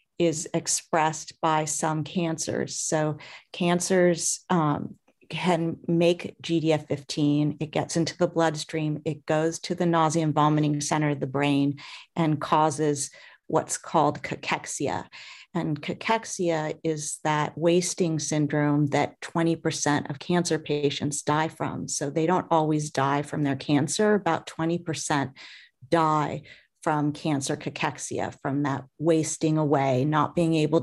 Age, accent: 40-59, American